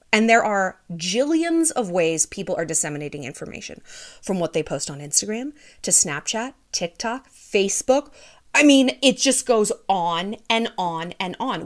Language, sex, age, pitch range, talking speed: English, female, 30-49, 185-270 Hz, 155 wpm